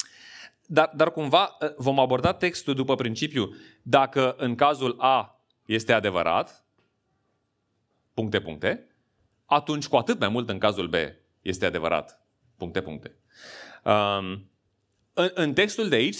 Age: 30-49